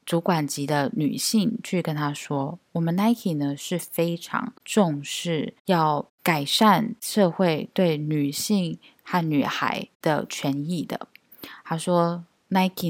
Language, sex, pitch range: Chinese, female, 150-185 Hz